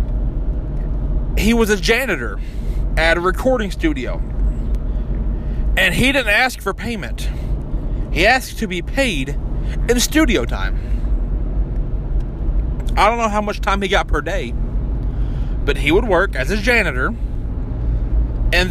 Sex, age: male, 30-49